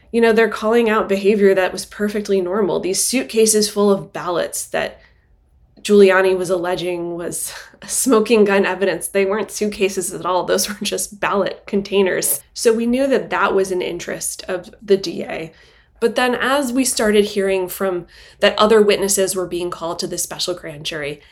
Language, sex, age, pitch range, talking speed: English, female, 20-39, 180-205 Hz, 175 wpm